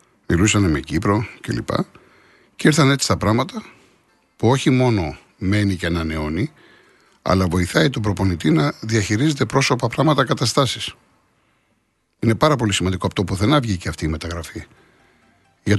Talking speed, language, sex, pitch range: 135 wpm, Greek, male, 95-115 Hz